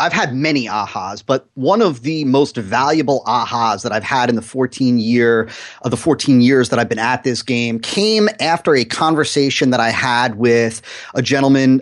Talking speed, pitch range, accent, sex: 200 wpm, 125-145 Hz, American, male